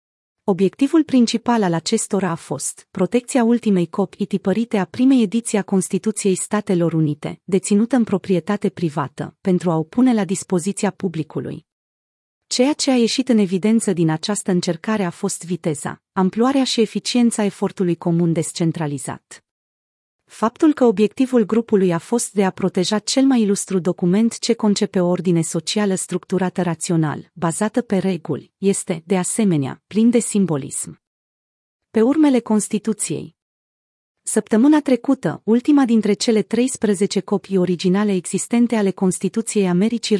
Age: 30-49